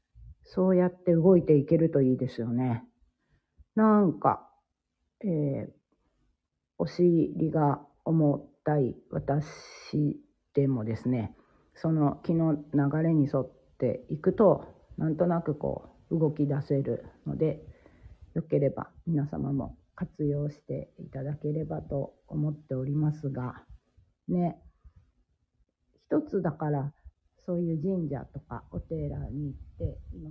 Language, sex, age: Japanese, female, 40-59